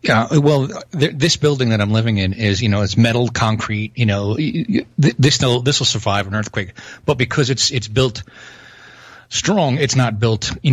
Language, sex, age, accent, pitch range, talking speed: English, male, 30-49, American, 105-125 Hz, 185 wpm